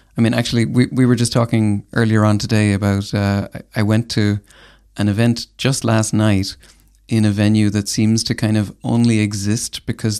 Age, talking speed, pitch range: 30-49, 190 wpm, 105-115 Hz